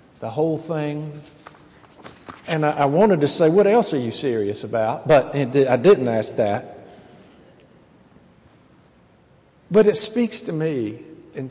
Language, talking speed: English, 140 wpm